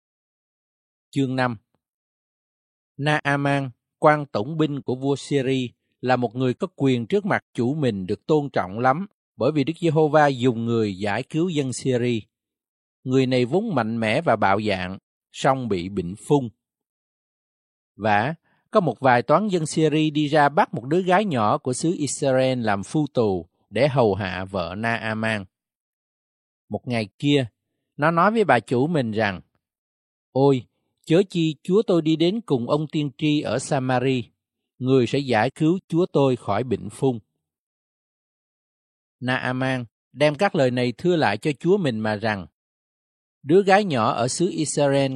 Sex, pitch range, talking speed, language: male, 115-150 Hz, 160 wpm, Vietnamese